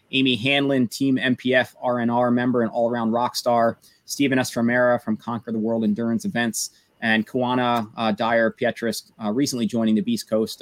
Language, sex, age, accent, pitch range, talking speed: English, male, 30-49, American, 115-135 Hz, 160 wpm